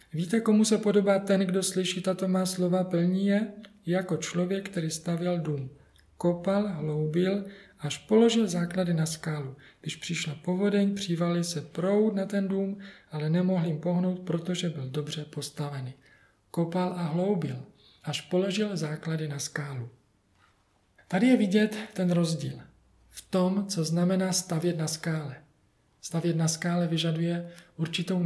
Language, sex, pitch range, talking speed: Czech, male, 155-190 Hz, 140 wpm